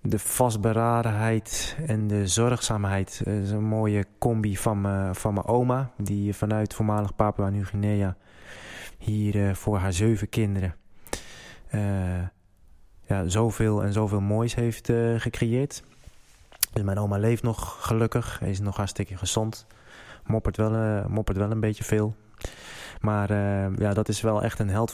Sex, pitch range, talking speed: male, 100-115 Hz, 150 wpm